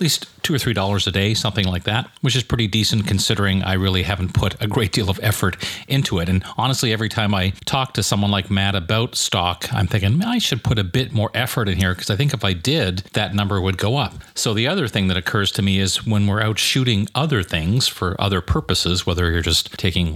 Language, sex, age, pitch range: English, male, 40-59, 95-115 Hz